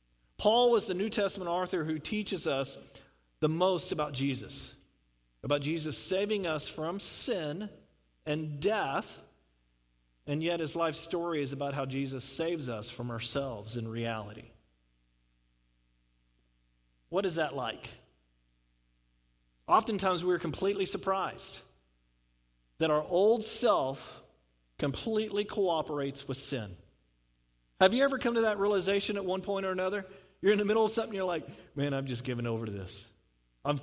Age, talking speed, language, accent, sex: 40-59, 145 wpm, English, American, male